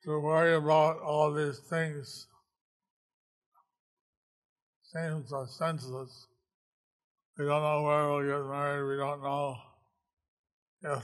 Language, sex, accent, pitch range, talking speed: English, male, American, 140-155 Hz, 105 wpm